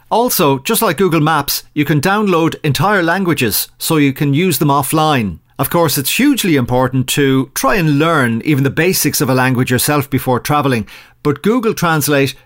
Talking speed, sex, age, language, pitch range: 180 wpm, male, 40-59, English, 135-180 Hz